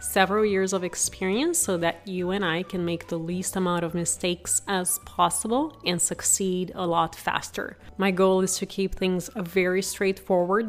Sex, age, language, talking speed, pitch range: female, 30-49, English, 175 wpm, 180-220 Hz